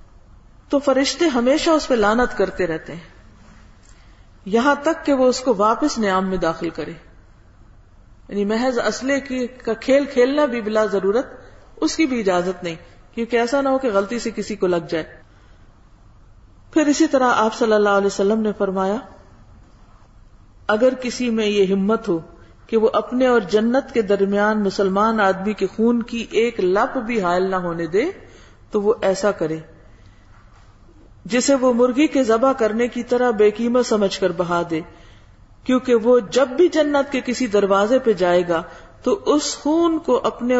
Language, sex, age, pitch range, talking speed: Urdu, female, 40-59, 170-245 Hz, 170 wpm